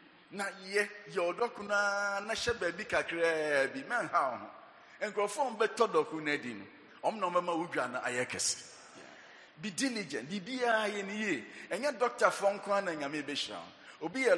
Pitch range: 130-200 Hz